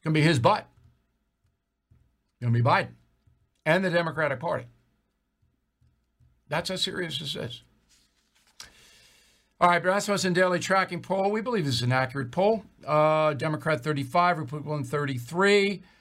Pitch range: 130-165 Hz